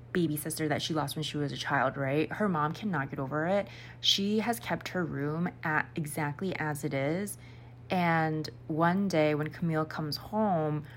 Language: English